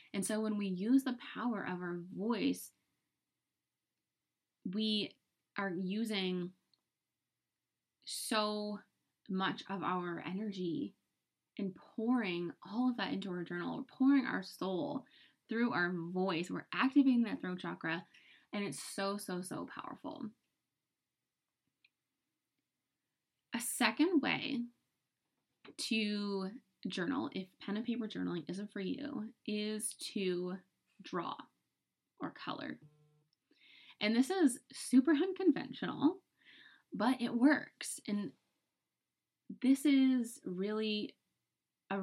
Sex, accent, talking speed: female, American, 105 wpm